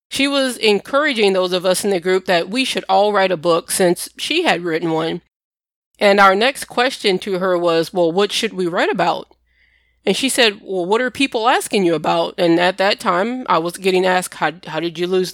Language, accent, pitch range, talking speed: English, American, 180-215 Hz, 225 wpm